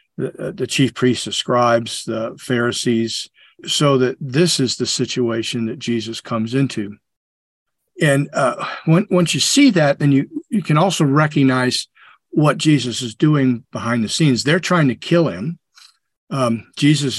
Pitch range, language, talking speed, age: 120-155 Hz, English, 155 wpm, 50-69